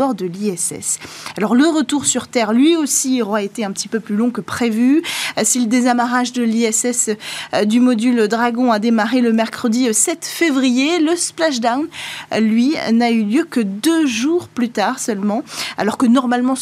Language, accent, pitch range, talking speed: French, French, 220-285 Hz, 175 wpm